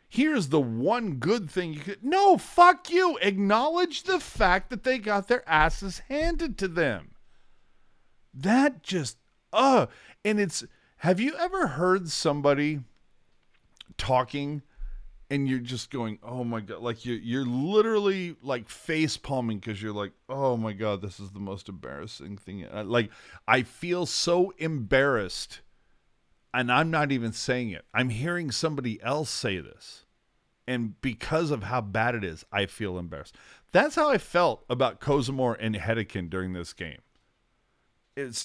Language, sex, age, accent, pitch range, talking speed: English, male, 40-59, American, 110-165 Hz, 150 wpm